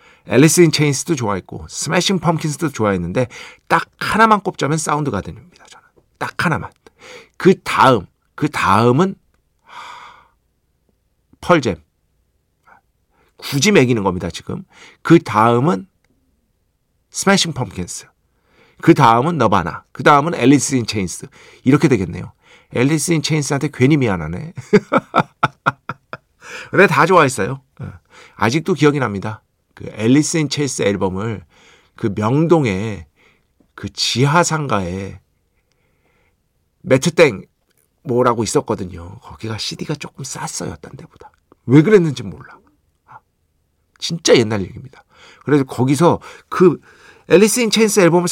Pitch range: 100-165 Hz